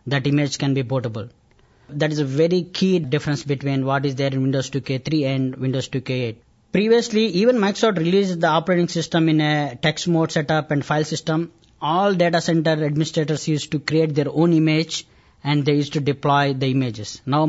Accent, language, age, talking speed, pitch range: Indian, English, 20-39, 185 wpm, 145-165 Hz